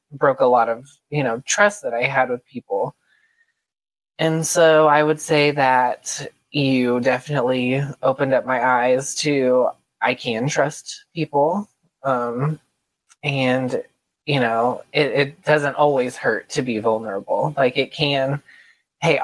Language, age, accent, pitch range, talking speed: English, 20-39, American, 130-155 Hz, 140 wpm